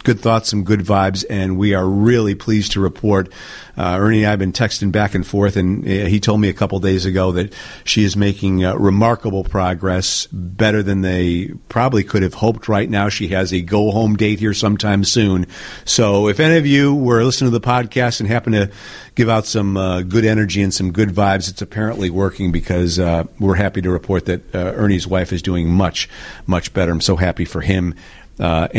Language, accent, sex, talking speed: English, American, male, 210 wpm